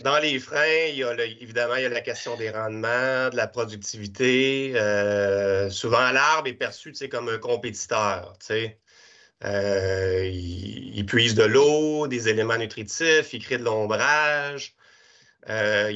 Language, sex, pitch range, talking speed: French, male, 110-155 Hz, 150 wpm